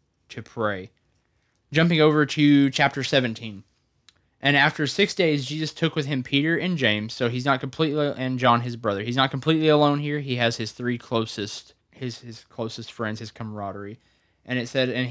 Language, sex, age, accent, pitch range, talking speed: English, male, 10-29, American, 105-125 Hz, 185 wpm